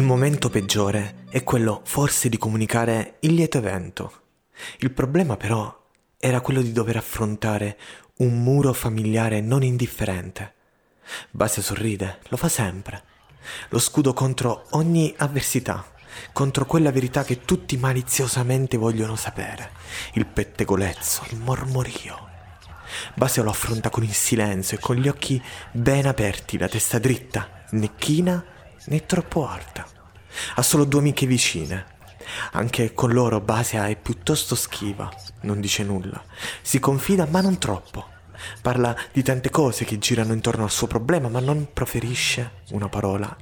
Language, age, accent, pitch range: Italian, 30-49, native, 105-130 Hz